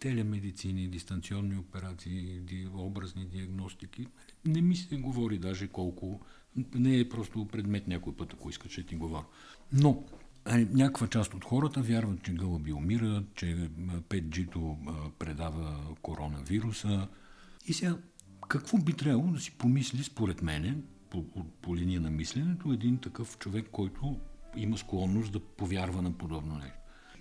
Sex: male